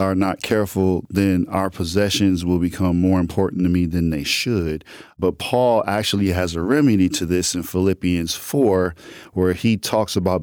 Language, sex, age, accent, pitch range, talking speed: English, male, 40-59, American, 90-105 Hz, 175 wpm